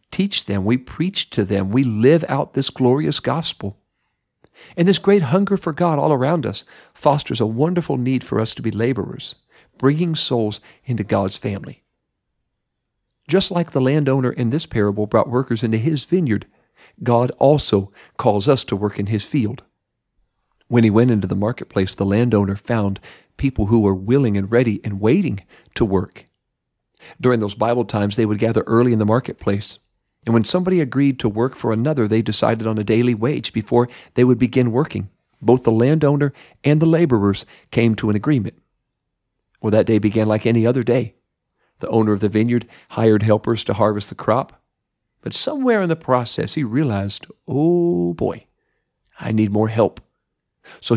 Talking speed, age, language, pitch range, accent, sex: 175 wpm, 50-69, English, 110-140 Hz, American, male